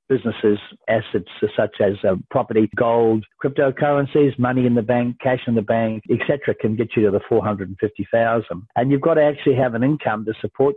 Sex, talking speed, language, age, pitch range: male, 185 wpm, English, 60-79, 110-130 Hz